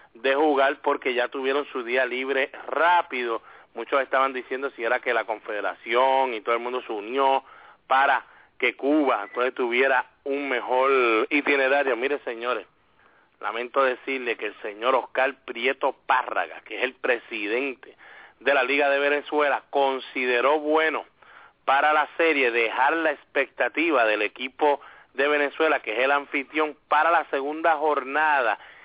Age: 30-49